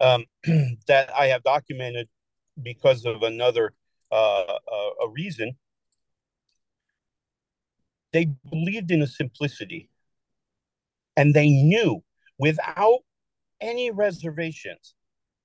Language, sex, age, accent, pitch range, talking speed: English, male, 50-69, American, 125-165 Hz, 90 wpm